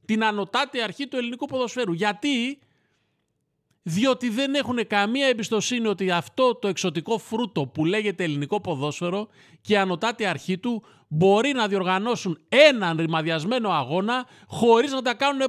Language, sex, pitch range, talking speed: Greek, male, 170-275 Hz, 140 wpm